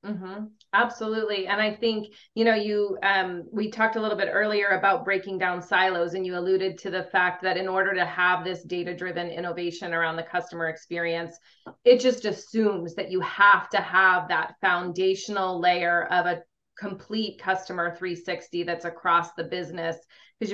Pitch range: 175-210 Hz